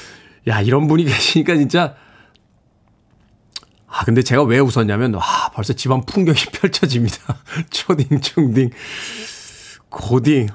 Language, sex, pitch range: Korean, male, 120-160 Hz